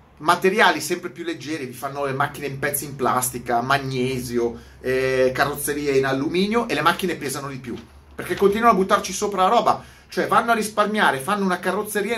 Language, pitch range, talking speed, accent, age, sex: Italian, 125-180 Hz, 180 wpm, native, 30-49, male